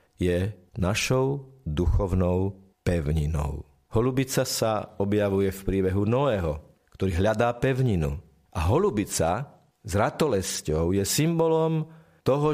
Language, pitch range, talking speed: Slovak, 85-120 Hz, 95 wpm